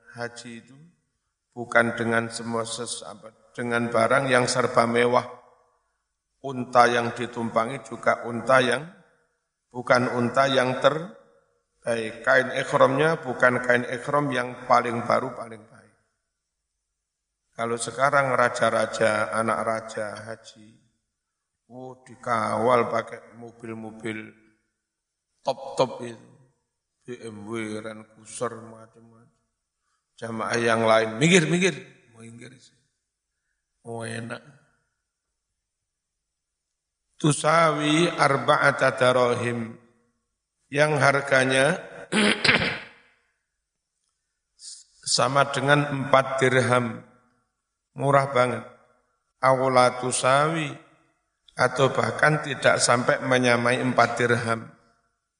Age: 50-69